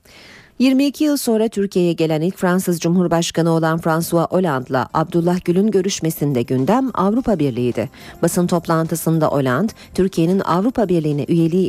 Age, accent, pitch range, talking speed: 40-59, native, 145-210 Hz, 125 wpm